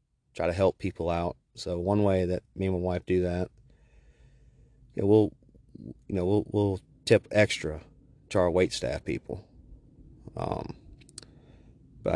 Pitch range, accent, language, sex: 90-100 Hz, American, English, male